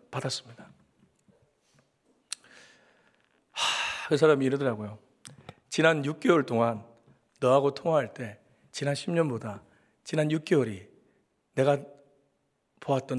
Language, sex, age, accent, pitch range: Korean, male, 40-59, native, 125-185 Hz